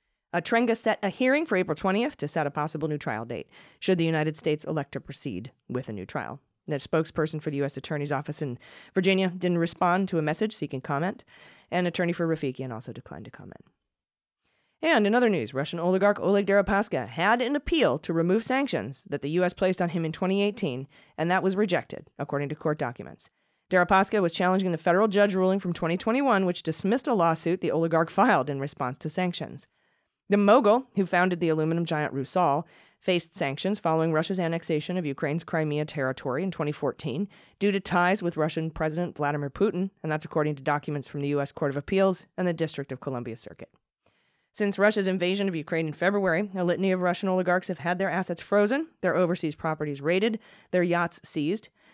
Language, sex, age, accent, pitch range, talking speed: English, female, 30-49, American, 150-195 Hz, 195 wpm